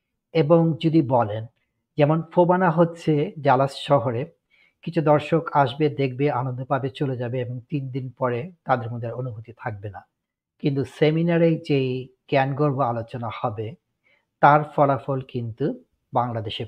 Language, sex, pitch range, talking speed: Bengali, male, 125-150 Hz, 115 wpm